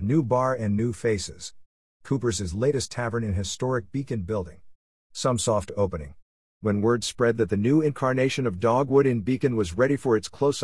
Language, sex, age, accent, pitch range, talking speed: English, male, 50-69, American, 95-125 Hz, 175 wpm